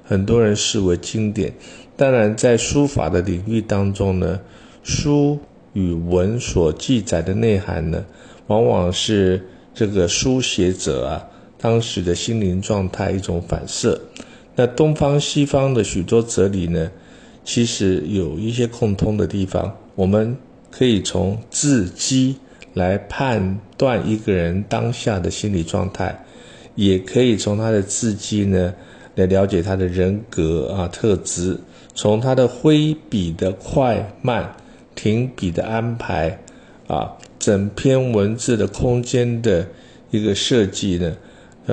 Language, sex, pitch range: Chinese, male, 95-115 Hz